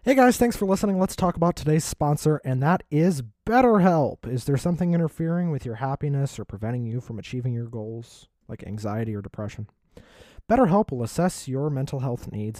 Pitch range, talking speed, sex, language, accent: 120-170 Hz, 185 wpm, male, English, American